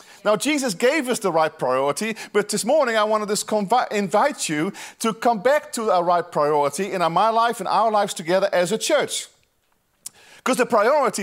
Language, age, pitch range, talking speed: English, 40-59, 205-280 Hz, 200 wpm